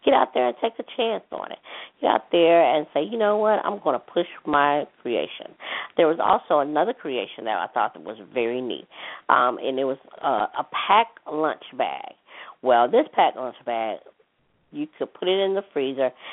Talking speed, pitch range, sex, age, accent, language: 200 wpm, 125-165 Hz, female, 40-59, American, English